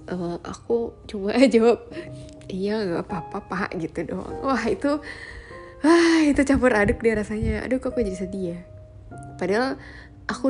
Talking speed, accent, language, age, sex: 155 wpm, native, Indonesian, 10-29, female